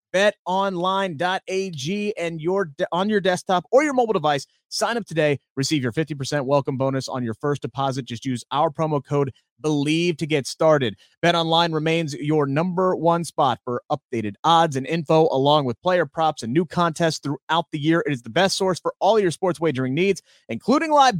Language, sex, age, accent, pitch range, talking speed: English, male, 30-49, American, 145-190 Hz, 185 wpm